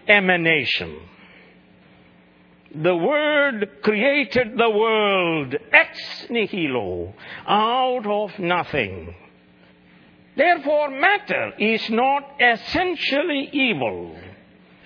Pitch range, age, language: 175-285 Hz, 60-79, English